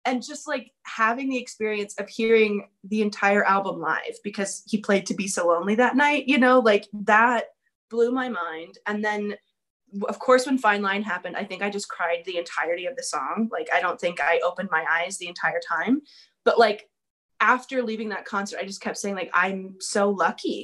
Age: 20-39